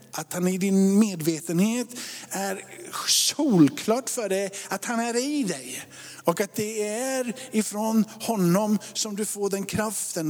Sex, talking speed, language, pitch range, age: male, 145 wpm, Swedish, 150-210 Hz, 50-69